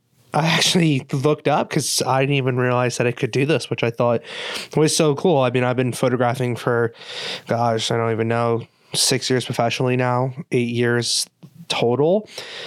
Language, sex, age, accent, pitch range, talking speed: English, male, 20-39, American, 120-150 Hz, 180 wpm